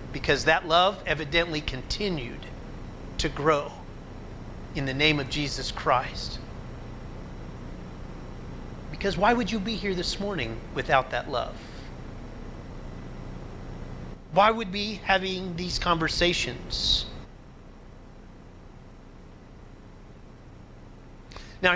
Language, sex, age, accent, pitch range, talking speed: English, male, 30-49, American, 135-185 Hz, 90 wpm